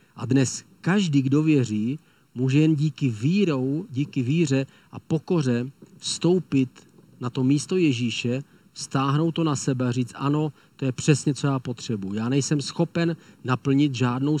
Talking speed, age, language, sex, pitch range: 150 wpm, 40-59, Czech, male, 125-155 Hz